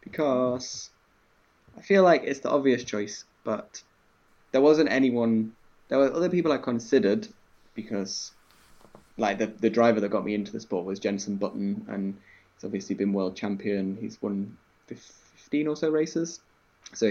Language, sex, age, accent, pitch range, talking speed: English, male, 20-39, British, 100-115 Hz, 160 wpm